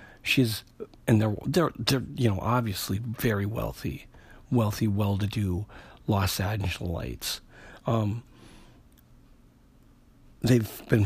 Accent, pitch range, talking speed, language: American, 105-125 Hz, 90 wpm, English